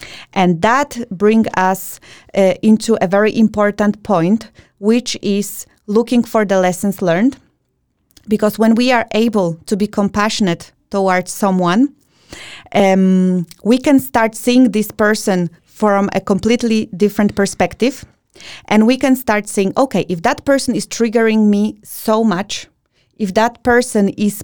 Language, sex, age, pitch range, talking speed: English, female, 30-49, 190-225 Hz, 140 wpm